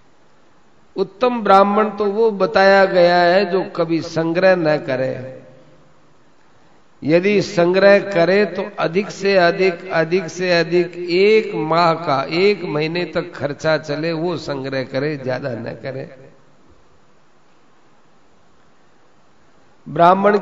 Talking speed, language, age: 120 wpm, Hindi, 50-69